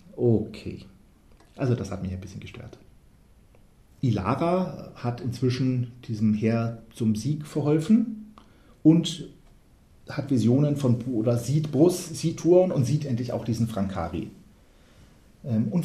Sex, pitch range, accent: male, 110-155 Hz, German